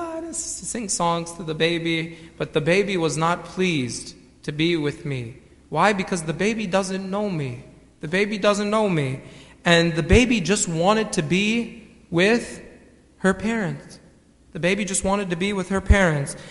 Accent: American